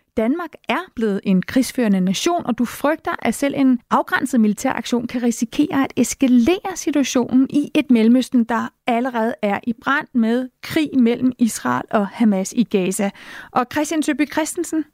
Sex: female